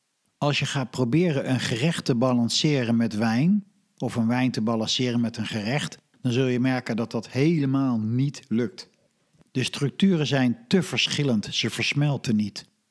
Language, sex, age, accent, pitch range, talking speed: Dutch, male, 50-69, Dutch, 115-145 Hz, 165 wpm